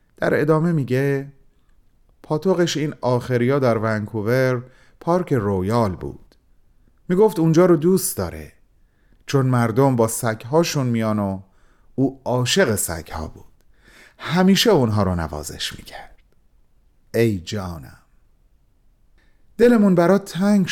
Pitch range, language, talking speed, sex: 110-145 Hz, Persian, 105 wpm, male